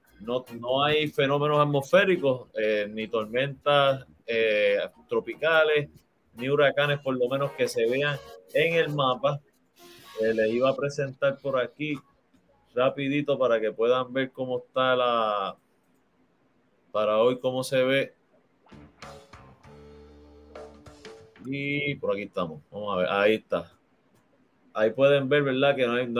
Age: 30-49